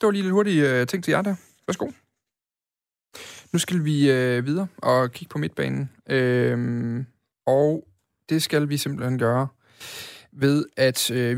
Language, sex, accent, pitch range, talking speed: Danish, male, native, 120-150 Hz, 155 wpm